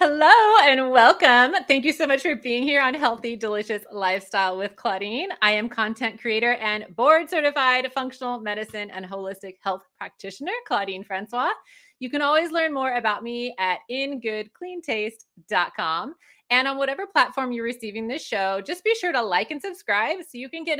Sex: female